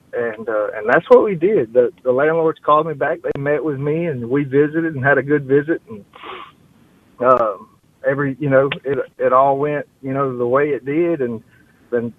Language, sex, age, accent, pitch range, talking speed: English, male, 40-59, American, 130-150 Hz, 205 wpm